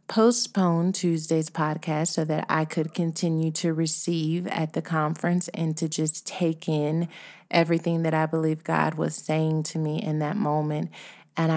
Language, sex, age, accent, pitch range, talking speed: English, female, 30-49, American, 155-175 Hz, 160 wpm